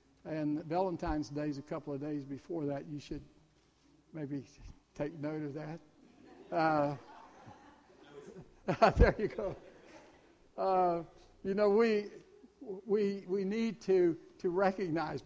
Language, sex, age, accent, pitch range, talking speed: English, male, 60-79, American, 150-195 Hz, 120 wpm